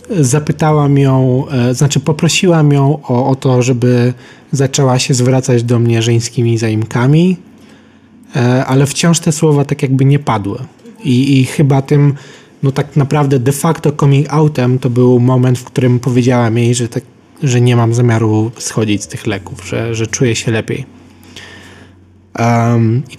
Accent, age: native, 20-39